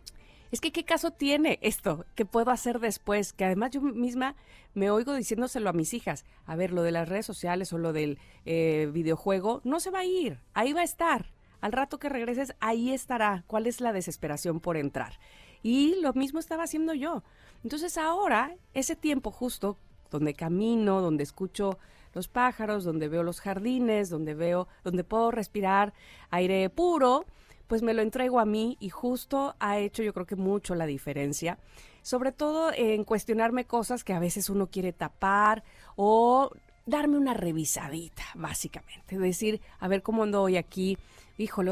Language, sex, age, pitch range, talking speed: Spanish, female, 40-59, 180-250 Hz, 175 wpm